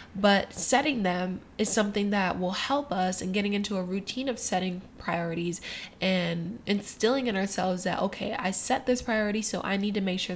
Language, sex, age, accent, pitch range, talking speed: English, female, 20-39, American, 185-230 Hz, 190 wpm